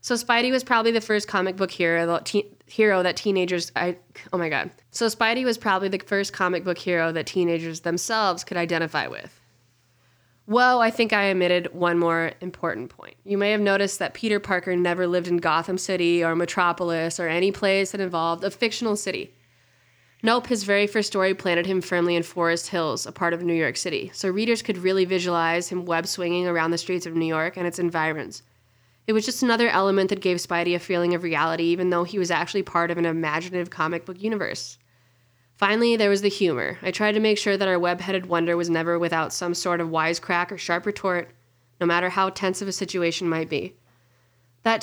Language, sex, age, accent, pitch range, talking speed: English, female, 20-39, American, 170-200 Hz, 210 wpm